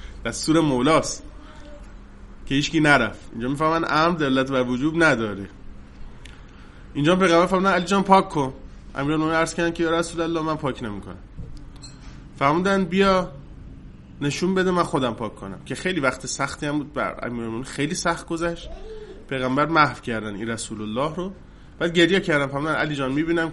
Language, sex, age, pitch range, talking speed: Persian, male, 20-39, 115-180 Hz, 150 wpm